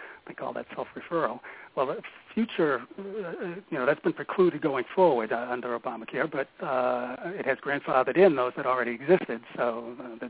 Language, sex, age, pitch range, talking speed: English, male, 60-79, 125-155 Hz, 180 wpm